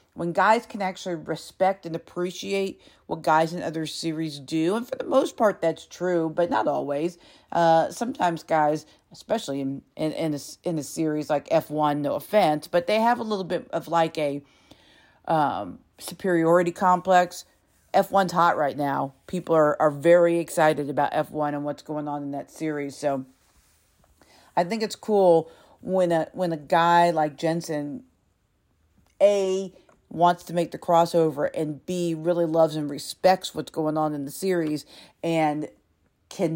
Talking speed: 170 wpm